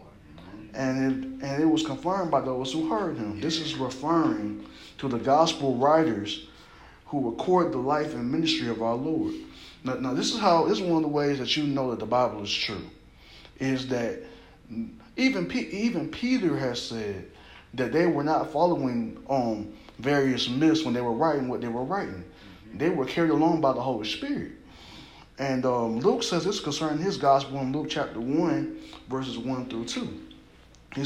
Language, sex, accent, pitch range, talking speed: English, male, American, 115-150 Hz, 185 wpm